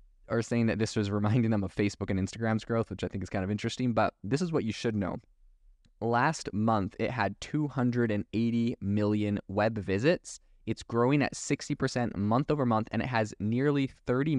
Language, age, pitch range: English, 20-39, 100-120 Hz